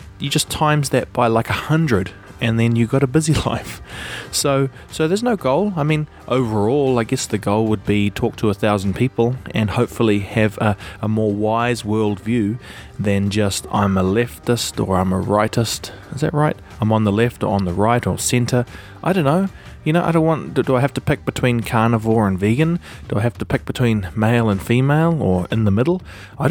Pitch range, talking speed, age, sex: 100-130 Hz, 215 wpm, 20-39, male